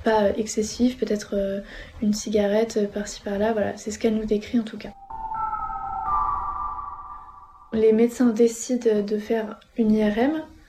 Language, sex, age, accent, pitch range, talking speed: French, female, 20-39, French, 210-235 Hz, 130 wpm